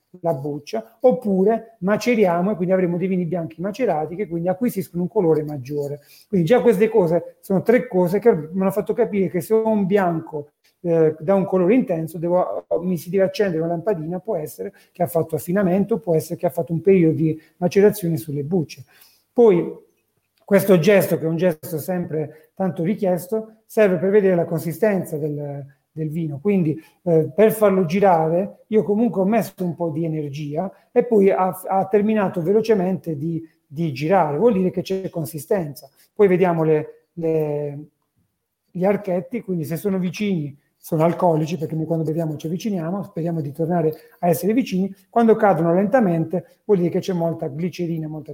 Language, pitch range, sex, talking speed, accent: Italian, 160-200 Hz, male, 175 wpm, native